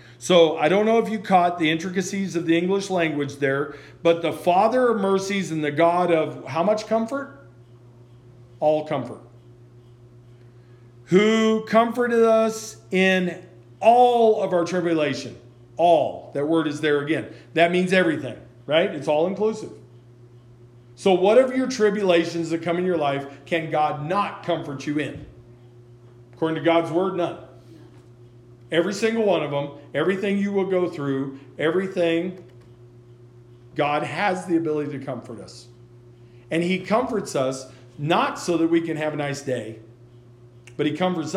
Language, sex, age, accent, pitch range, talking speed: English, male, 40-59, American, 120-175 Hz, 150 wpm